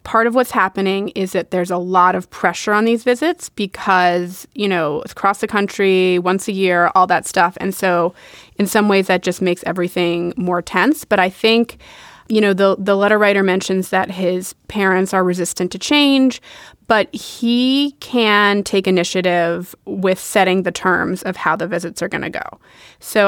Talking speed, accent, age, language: 185 wpm, American, 20-39, English